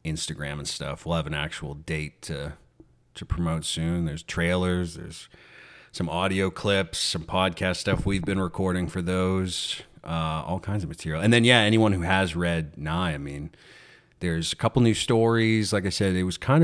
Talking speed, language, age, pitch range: 190 wpm, English, 30-49, 85-105 Hz